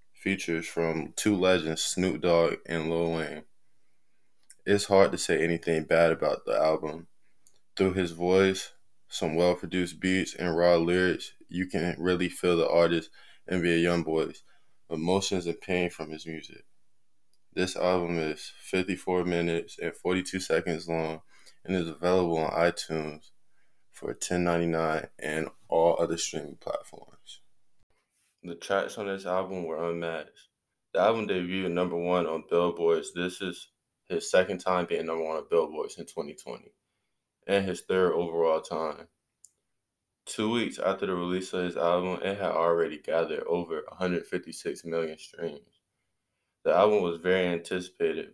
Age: 20-39